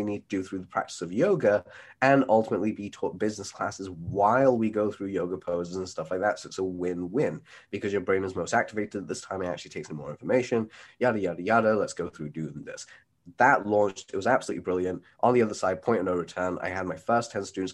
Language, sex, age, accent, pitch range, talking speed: English, male, 20-39, British, 90-105 Hz, 235 wpm